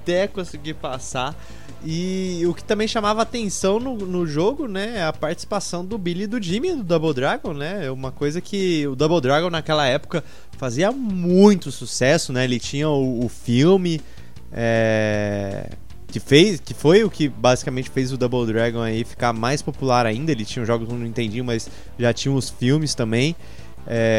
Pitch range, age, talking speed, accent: 125-185 Hz, 20-39, 180 wpm, Brazilian